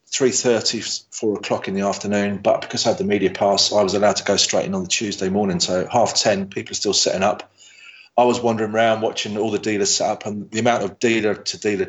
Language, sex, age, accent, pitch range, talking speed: English, male, 30-49, British, 105-135 Hz, 235 wpm